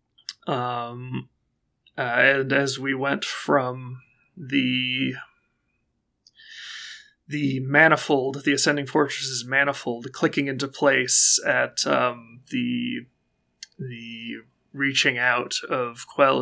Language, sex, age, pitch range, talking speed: English, male, 30-49, 125-150 Hz, 90 wpm